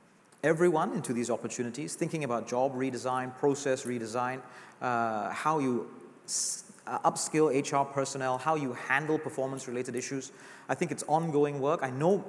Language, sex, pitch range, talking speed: English, male, 120-150 Hz, 145 wpm